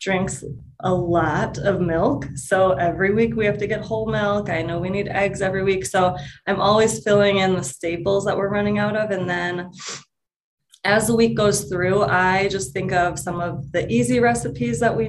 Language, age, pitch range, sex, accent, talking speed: English, 20-39, 170-200 Hz, female, American, 205 wpm